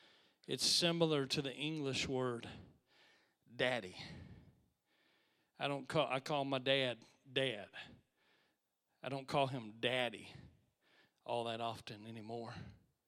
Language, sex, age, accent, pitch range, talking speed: English, male, 40-59, American, 125-145 Hz, 110 wpm